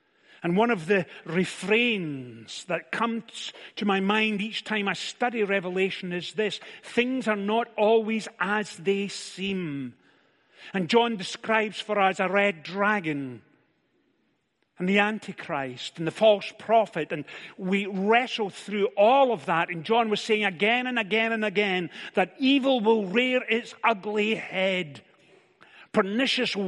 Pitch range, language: 160-220 Hz, English